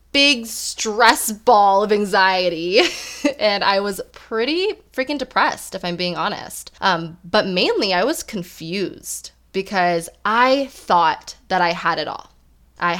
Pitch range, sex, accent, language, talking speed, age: 165-220 Hz, female, American, English, 140 wpm, 20-39